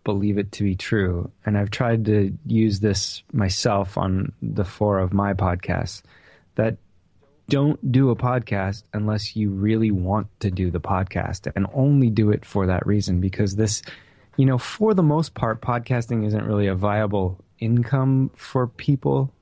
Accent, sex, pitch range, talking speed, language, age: American, male, 95-115 Hz, 165 wpm, English, 20-39